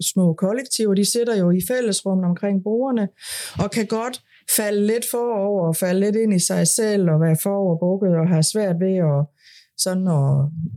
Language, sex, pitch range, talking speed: Danish, female, 165-220 Hz, 180 wpm